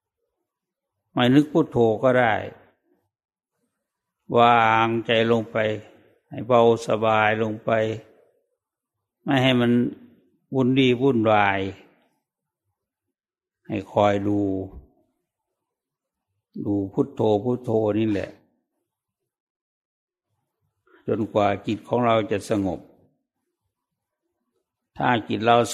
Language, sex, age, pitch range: English, male, 60-79, 110-125 Hz